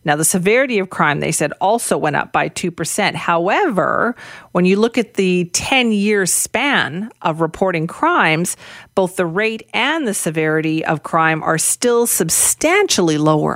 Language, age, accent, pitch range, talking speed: English, 40-59, American, 165-210 Hz, 155 wpm